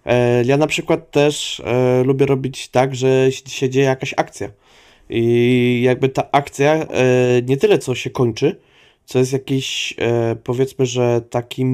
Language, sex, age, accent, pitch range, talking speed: Polish, male, 20-39, native, 125-150 Hz, 140 wpm